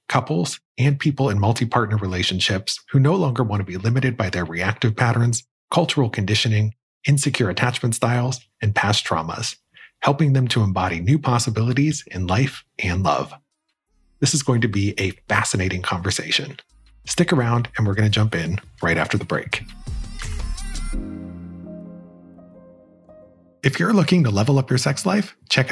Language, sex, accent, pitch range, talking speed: English, male, American, 100-135 Hz, 150 wpm